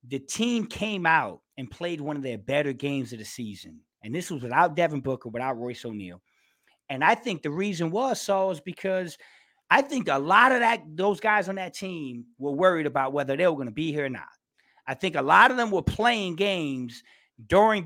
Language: English